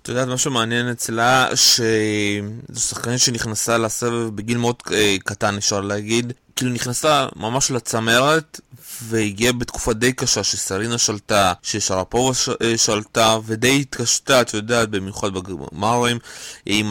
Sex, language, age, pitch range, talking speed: male, Hebrew, 20-39, 110-130 Hz, 120 wpm